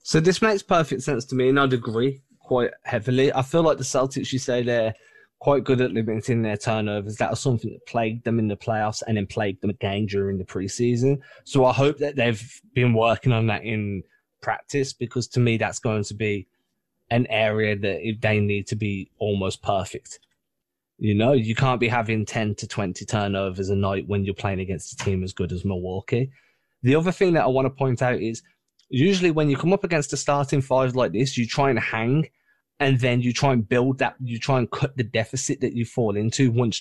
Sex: male